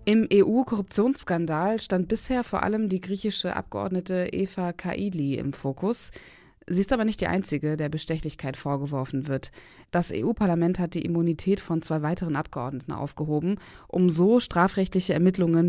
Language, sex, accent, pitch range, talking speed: German, female, German, 155-195 Hz, 140 wpm